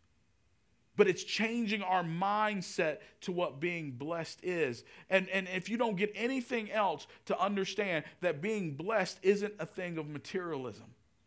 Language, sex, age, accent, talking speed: English, male, 50-69, American, 150 wpm